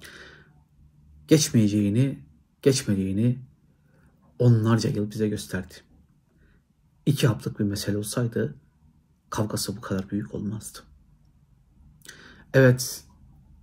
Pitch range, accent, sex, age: 80-115 Hz, native, male, 60-79